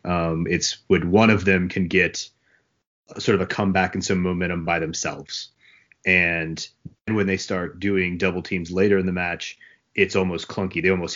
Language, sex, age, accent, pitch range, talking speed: English, male, 30-49, American, 90-120 Hz, 185 wpm